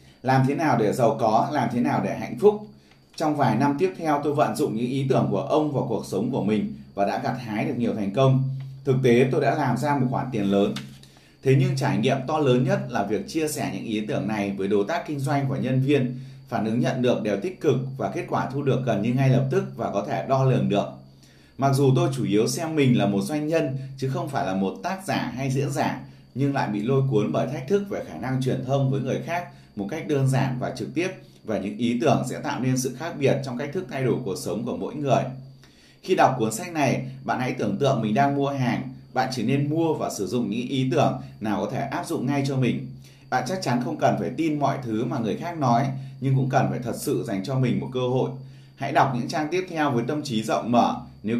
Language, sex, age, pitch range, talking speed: Vietnamese, male, 20-39, 115-140 Hz, 265 wpm